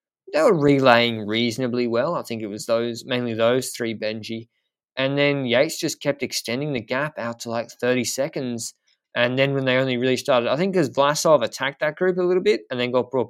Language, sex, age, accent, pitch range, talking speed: English, male, 20-39, Australian, 115-145 Hz, 215 wpm